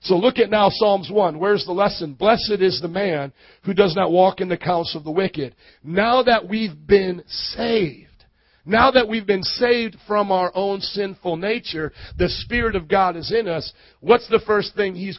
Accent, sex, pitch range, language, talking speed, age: American, male, 160-200 Hz, English, 200 wpm, 50-69